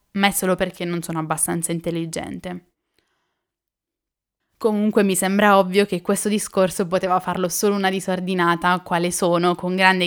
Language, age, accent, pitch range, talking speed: Italian, 10-29, native, 180-235 Hz, 145 wpm